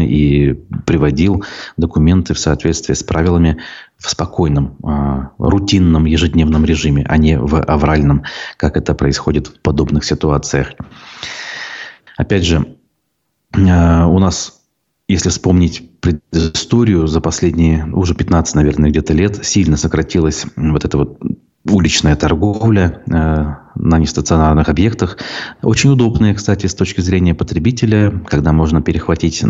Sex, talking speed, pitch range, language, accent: male, 120 wpm, 75-90 Hz, Russian, native